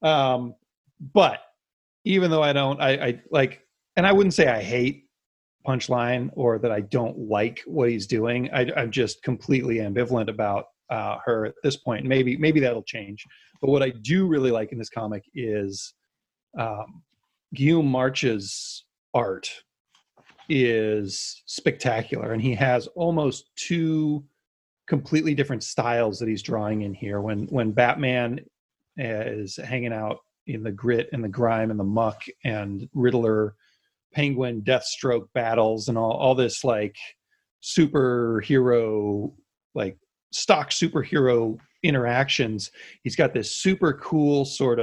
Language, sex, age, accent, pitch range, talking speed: English, male, 30-49, American, 115-140 Hz, 135 wpm